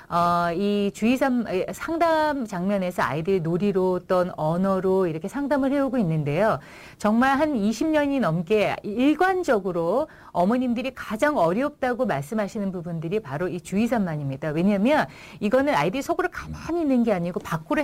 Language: Korean